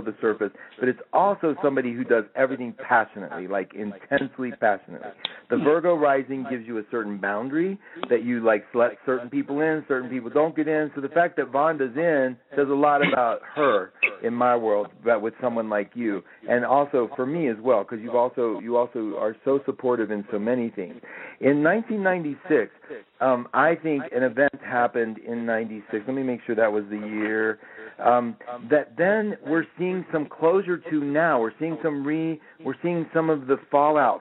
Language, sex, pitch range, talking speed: English, male, 115-150 Hz, 190 wpm